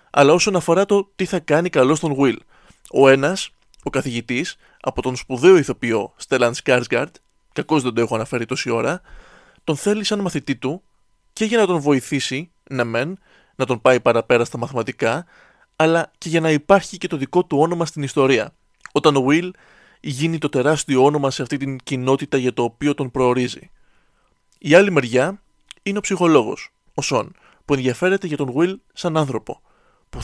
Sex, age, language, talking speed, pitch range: male, 20-39, Greek, 175 wpm, 130-175 Hz